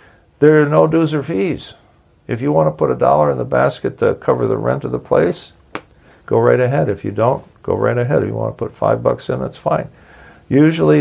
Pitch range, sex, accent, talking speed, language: 100-125 Hz, male, American, 235 wpm, English